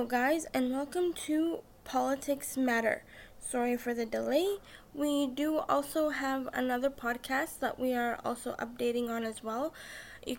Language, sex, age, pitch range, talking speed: English, female, 10-29, 250-280 Hz, 145 wpm